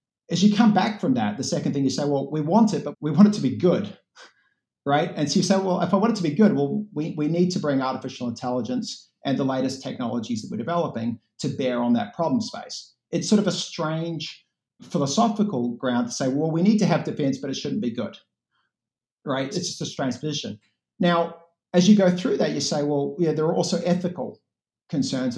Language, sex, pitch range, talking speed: English, male, 120-180 Hz, 230 wpm